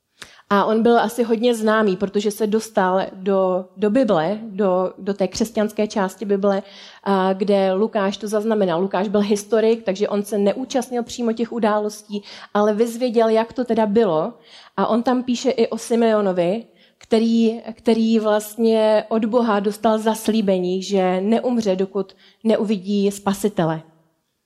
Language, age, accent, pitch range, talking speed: Czech, 30-49, native, 190-225 Hz, 135 wpm